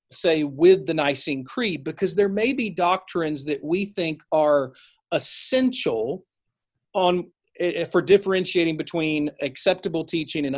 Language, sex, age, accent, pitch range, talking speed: English, male, 40-59, American, 145-200 Hz, 125 wpm